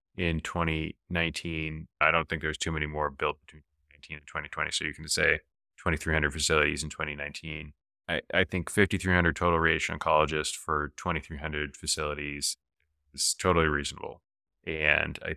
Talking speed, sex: 145 wpm, male